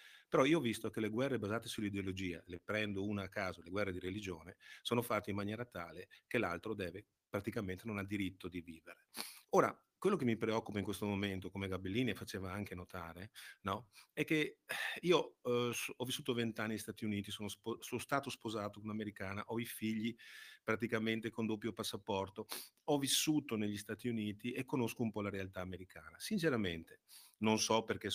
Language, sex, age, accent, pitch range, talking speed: Italian, male, 40-59, native, 95-115 Hz, 185 wpm